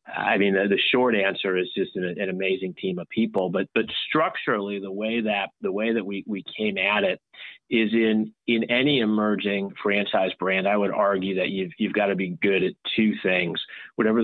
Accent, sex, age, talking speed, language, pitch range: American, male, 30-49, 205 wpm, English, 95-110 Hz